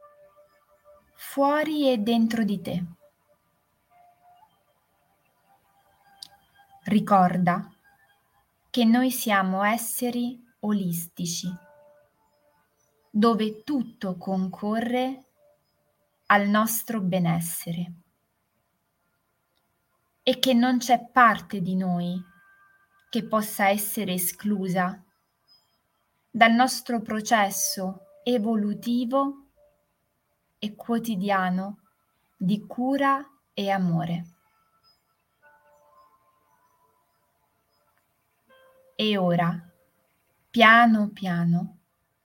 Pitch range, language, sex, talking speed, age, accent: 180-250 Hz, Italian, female, 60 wpm, 20-39, native